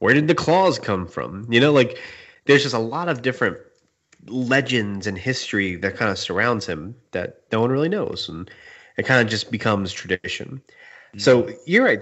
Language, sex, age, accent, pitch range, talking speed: English, male, 30-49, American, 100-130 Hz, 190 wpm